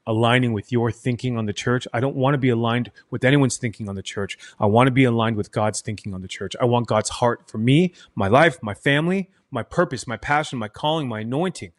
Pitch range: 110-140 Hz